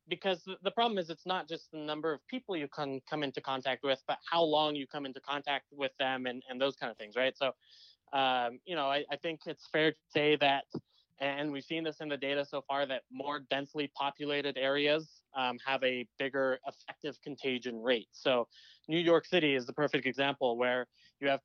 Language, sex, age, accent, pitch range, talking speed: English, male, 20-39, American, 135-165 Hz, 215 wpm